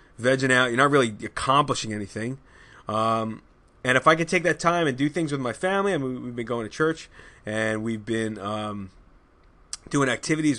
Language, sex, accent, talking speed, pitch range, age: English, male, American, 200 wpm, 110-155 Hz, 20-39